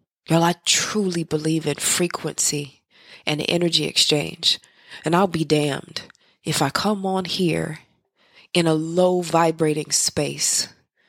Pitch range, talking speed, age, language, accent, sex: 155-180 Hz, 125 wpm, 20-39, English, American, female